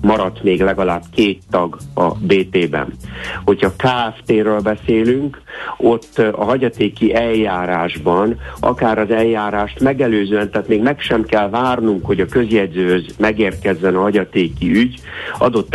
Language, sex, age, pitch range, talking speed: Hungarian, male, 60-79, 95-115 Hz, 120 wpm